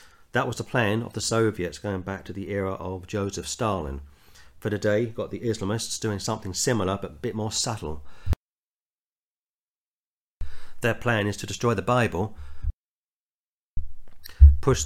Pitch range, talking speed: 80-110 Hz, 145 wpm